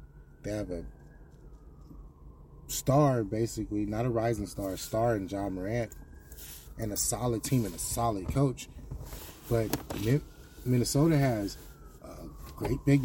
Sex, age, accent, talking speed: male, 30-49, American, 130 wpm